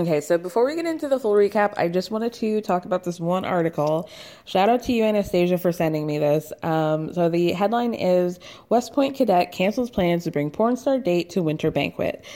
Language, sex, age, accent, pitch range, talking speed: English, female, 20-39, American, 165-220 Hz, 220 wpm